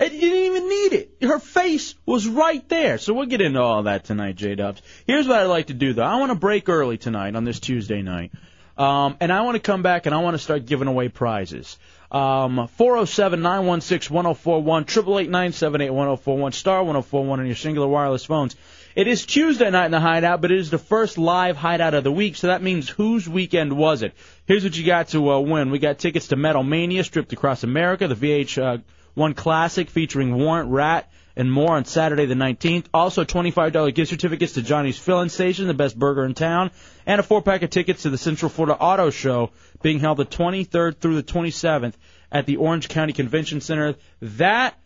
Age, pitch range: 30-49, 140-195 Hz